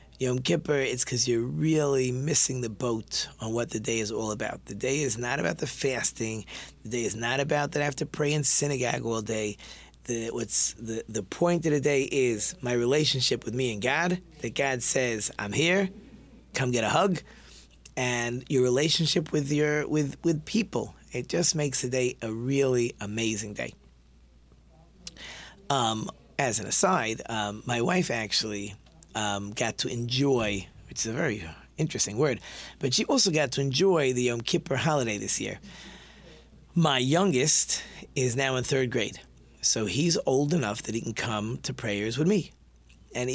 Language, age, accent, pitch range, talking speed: English, 30-49, American, 110-145 Hz, 175 wpm